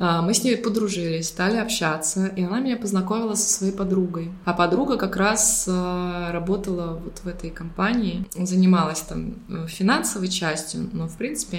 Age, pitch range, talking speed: 20-39, 165-195 Hz, 150 wpm